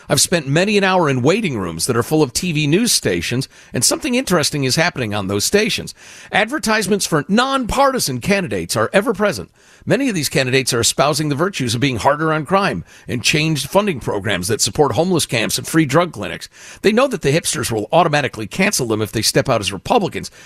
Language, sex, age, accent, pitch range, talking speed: English, male, 50-69, American, 115-165 Hz, 200 wpm